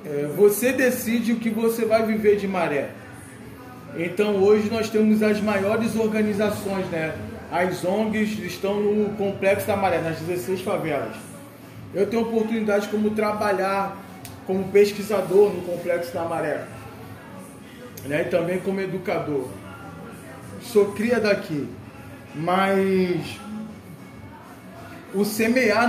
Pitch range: 170-215 Hz